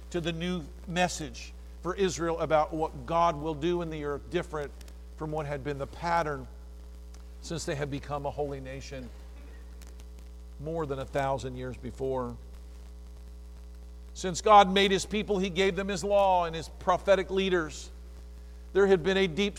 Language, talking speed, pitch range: English, 160 wpm, 145-195 Hz